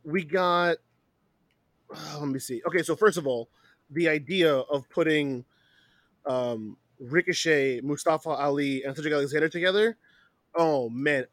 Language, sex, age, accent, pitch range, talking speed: English, male, 20-39, American, 140-165 Hz, 125 wpm